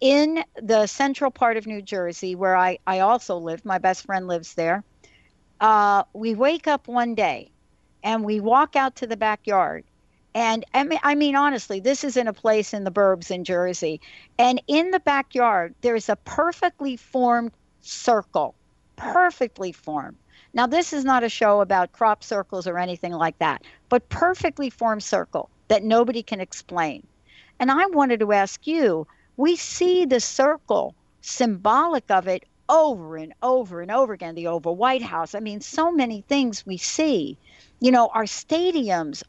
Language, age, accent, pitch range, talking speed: English, 60-79, American, 190-265 Hz, 170 wpm